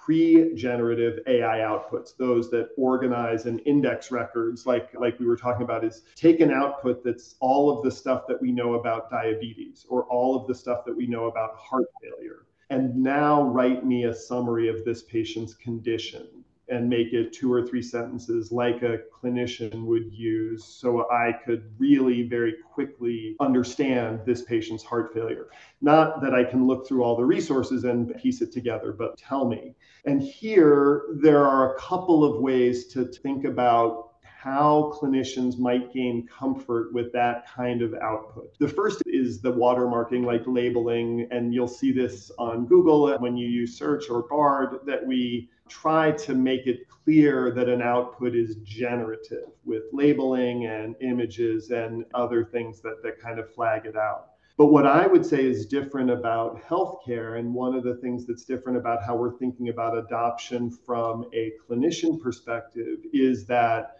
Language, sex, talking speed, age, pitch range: English, male, 170 wpm, 40-59, 115-135 Hz